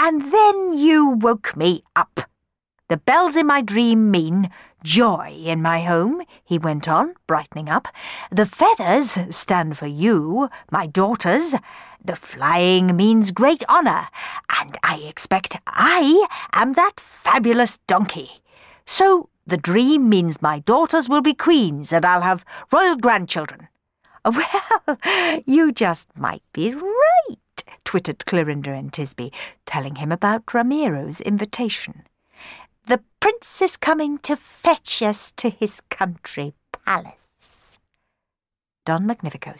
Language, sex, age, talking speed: English, female, 50-69, 125 wpm